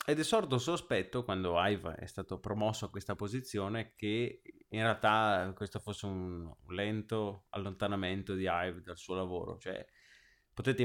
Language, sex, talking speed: Italian, male, 150 wpm